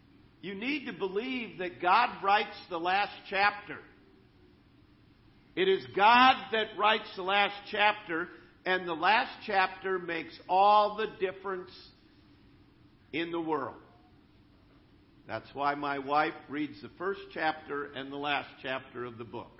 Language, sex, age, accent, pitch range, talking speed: English, male, 50-69, American, 140-210 Hz, 135 wpm